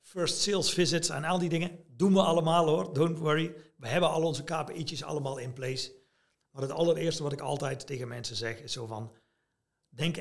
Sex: male